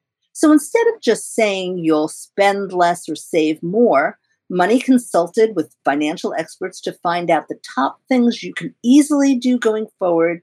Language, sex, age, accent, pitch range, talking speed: English, female, 50-69, American, 165-245 Hz, 160 wpm